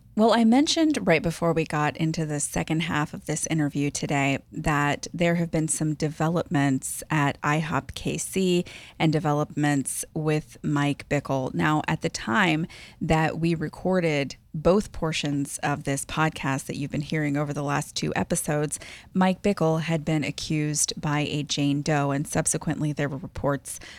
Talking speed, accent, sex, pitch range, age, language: 160 wpm, American, female, 145-165 Hz, 30-49, English